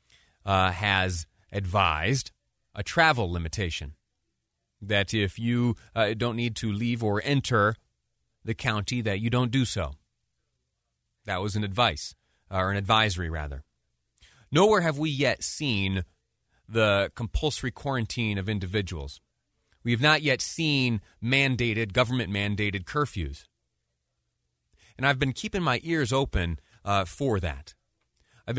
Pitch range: 90-125 Hz